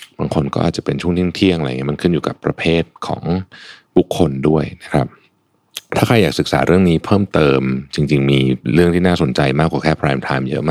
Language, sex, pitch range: Thai, male, 70-95 Hz